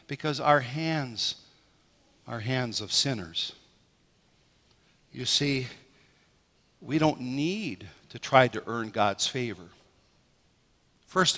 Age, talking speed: 60-79, 100 wpm